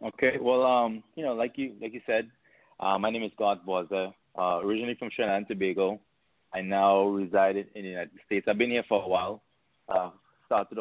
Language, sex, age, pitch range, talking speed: English, male, 30-49, 100-115 Hz, 205 wpm